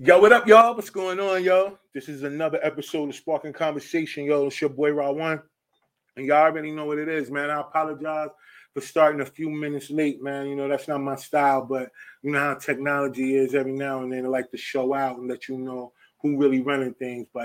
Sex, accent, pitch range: male, American, 135-155 Hz